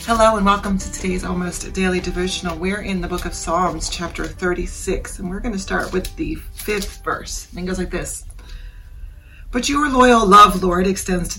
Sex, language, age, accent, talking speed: female, English, 30-49, American, 195 wpm